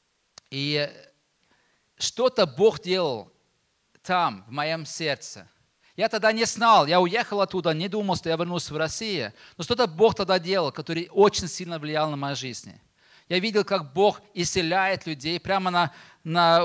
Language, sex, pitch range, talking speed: Russian, male, 160-215 Hz, 155 wpm